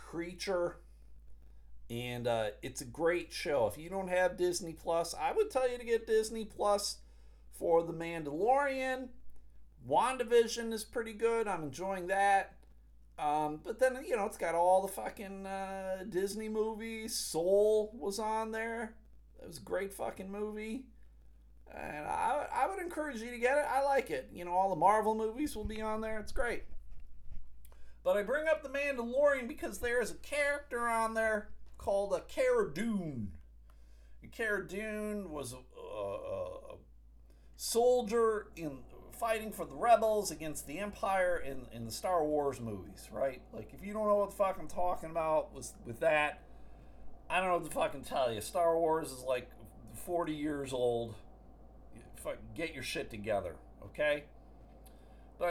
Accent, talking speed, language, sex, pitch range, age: American, 165 wpm, English, male, 135-225 Hz, 40-59